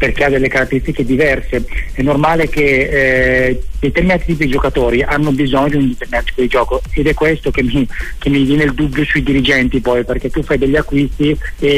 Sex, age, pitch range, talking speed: male, 40-59, 130-150 Hz, 200 wpm